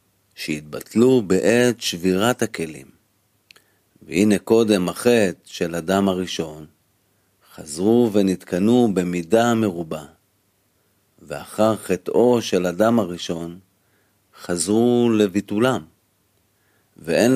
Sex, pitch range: male, 95-115 Hz